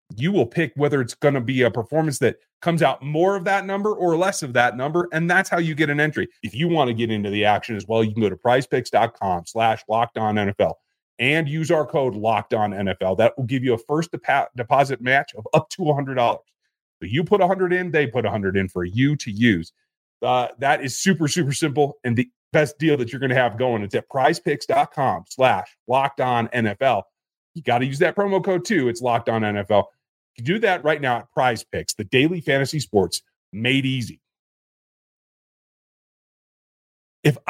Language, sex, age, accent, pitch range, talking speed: English, male, 30-49, American, 115-160 Hz, 210 wpm